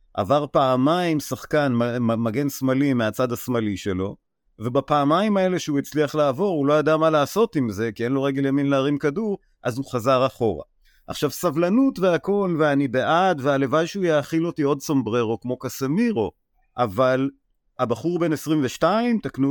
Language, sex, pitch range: Hebrew, male, 120-150 Hz